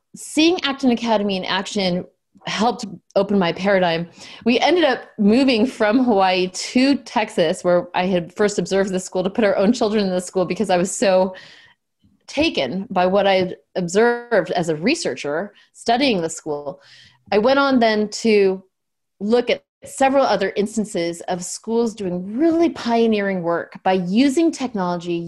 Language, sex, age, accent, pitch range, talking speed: English, female, 30-49, American, 185-230 Hz, 155 wpm